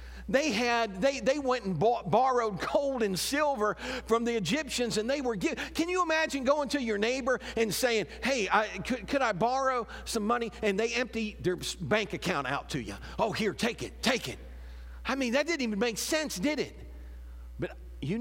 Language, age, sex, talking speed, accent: English, 50-69, male, 200 wpm, American